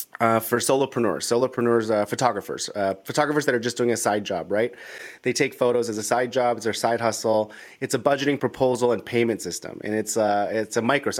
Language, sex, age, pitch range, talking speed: English, male, 30-49, 110-165 Hz, 210 wpm